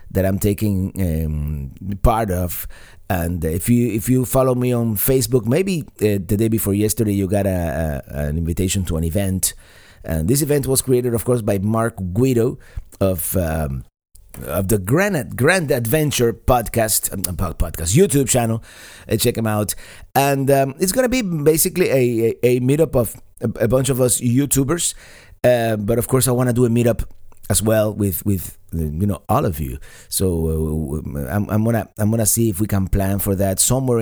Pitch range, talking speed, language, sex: 95-125 Hz, 190 wpm, English, male